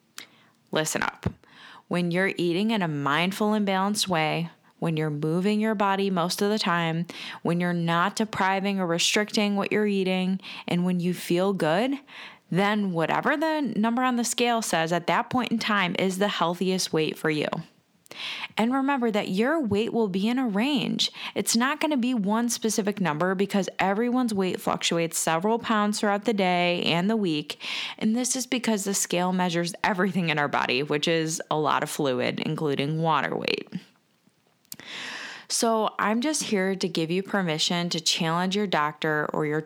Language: English